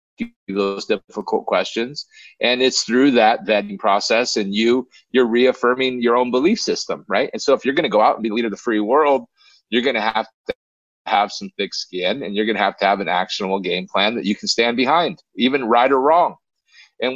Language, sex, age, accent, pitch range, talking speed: English, male, 40-59, American, 100-125 Hz, 220 wpm